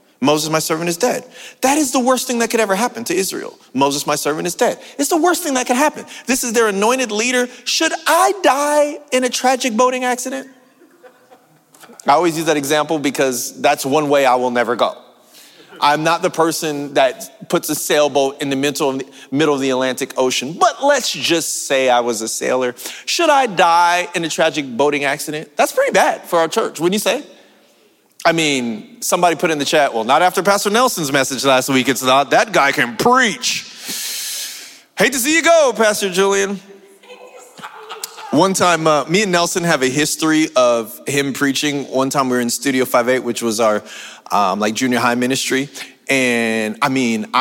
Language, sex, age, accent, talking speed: English, male, 40-59, American, 195 wpm